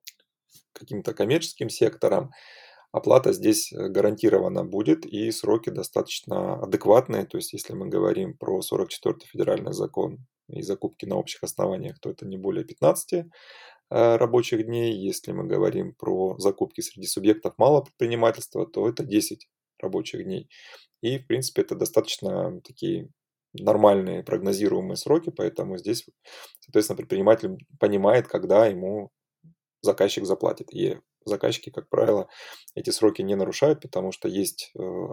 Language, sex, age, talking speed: Russian, male, 20-39, 130 wpm